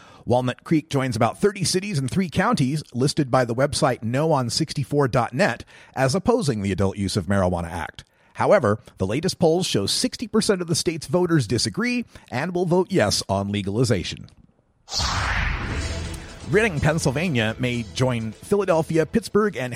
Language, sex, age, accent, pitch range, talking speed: English, male, 40-59, American, 110-165 Hz, 140 wpm